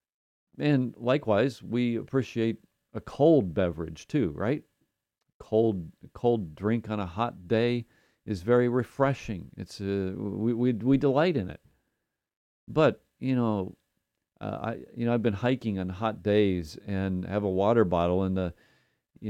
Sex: male